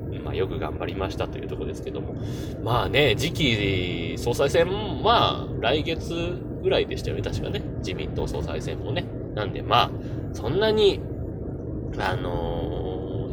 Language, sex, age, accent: Japanese, male, 20-39, native